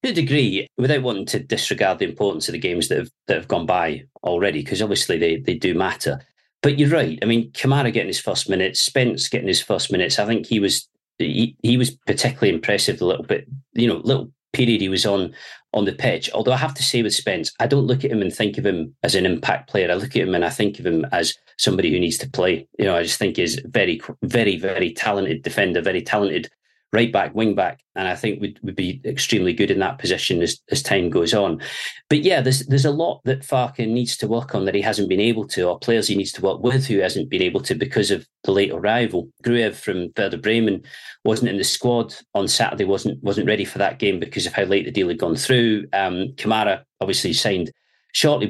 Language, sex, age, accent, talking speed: English, male, 40-59, British, 240 wpm